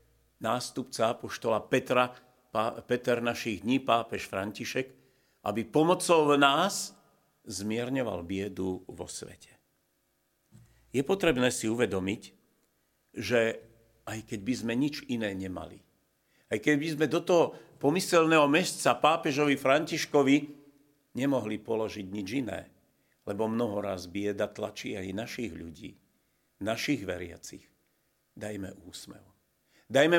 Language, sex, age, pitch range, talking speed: Slovak, male, 50-69, 110-145 Hz, 105 wpm